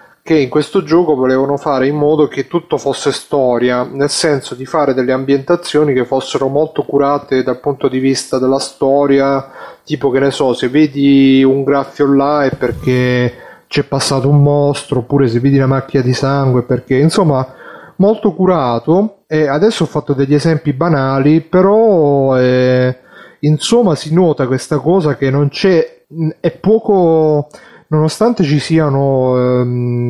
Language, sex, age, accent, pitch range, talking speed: Italian, male, 30-49, native, 130-150 Hz, 155 wpm